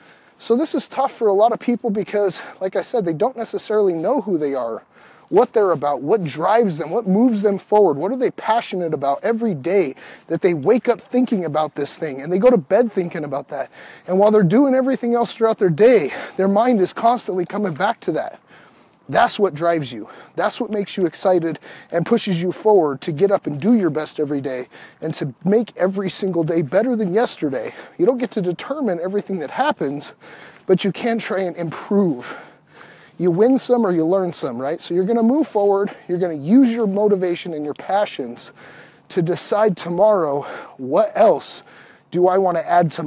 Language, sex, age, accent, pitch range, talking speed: English, male, 30-49, American, 170-230 Hz, 210 wpm